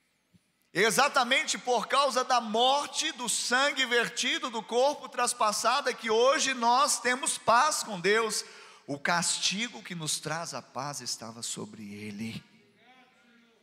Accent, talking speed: Brazilian, 125 wpm